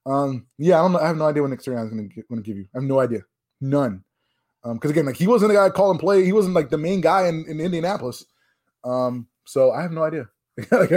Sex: male